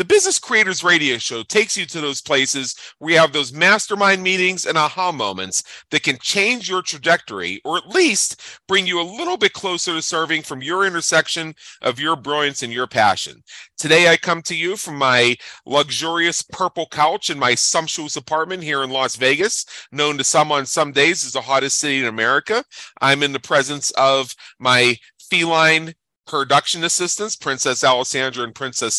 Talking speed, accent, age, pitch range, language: 180 wpm, American, 40-59, 135-175 Hz, English